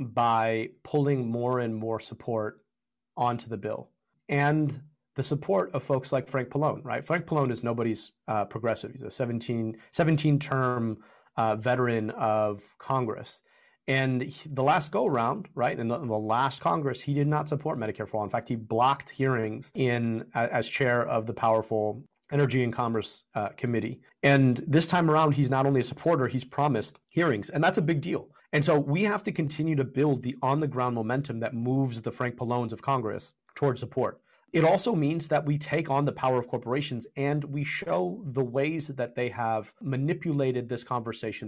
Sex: male